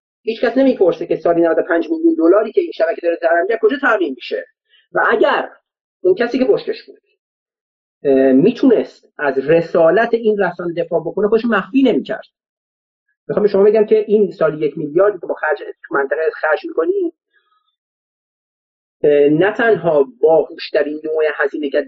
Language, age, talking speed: Persian, 30-49, 145 wpm